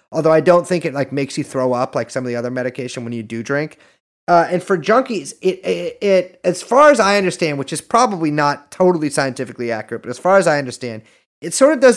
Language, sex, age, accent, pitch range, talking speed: English, male, 30-49, American, 140-185 Hz, 245 wpm